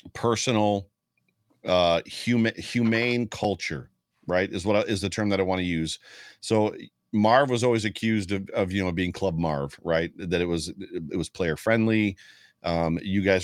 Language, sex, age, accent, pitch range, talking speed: English, male, 40-59, American, 95-125 Hz, 175 wpm